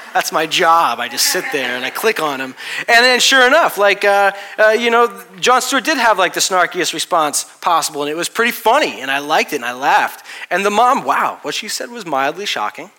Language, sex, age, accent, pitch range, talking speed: English, male, 30-49, American, 120-165 Hz, 240 wpm